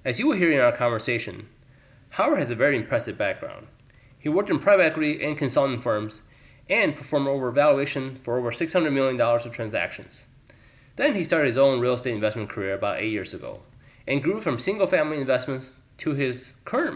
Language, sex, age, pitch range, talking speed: English, male, 20-39, 120-145 Hz, 190 wpm